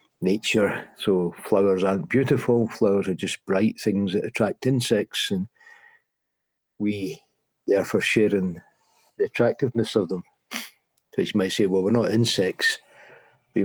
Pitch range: 95-115 Hz